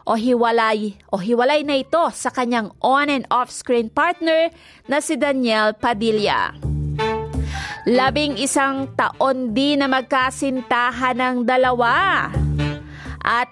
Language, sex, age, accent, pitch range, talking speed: Filipino, female, 30-49, native, 225-270 Hz, 100 wpm